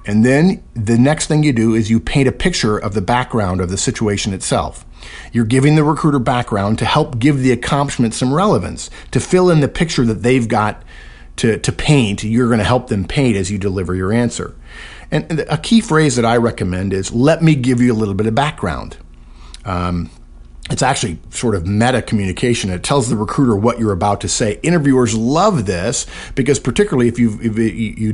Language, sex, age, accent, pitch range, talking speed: English, male, 50-69, American, 95-125 Hz, 205 wpm